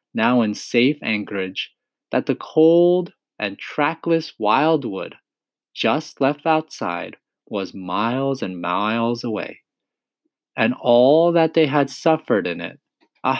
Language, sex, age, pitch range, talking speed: English, male, 20-39, 115-155 Hz, 120 wpm